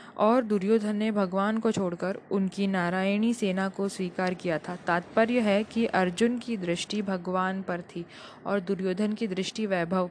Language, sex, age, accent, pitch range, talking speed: Hindi, female, 20-39, native, 185-220 Hz, 160 wpm